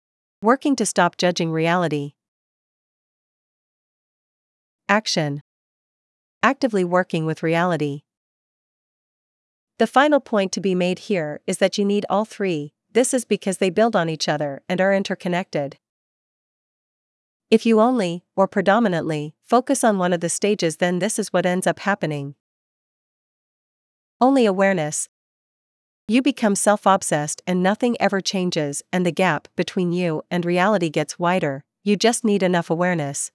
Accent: American